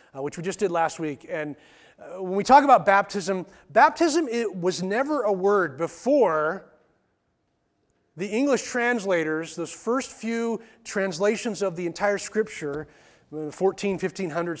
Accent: American